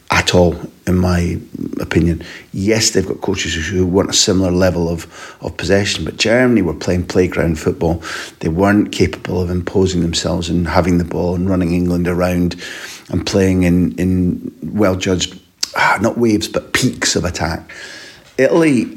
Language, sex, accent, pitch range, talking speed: English, male, British, 90-100 Hz, 155 wpm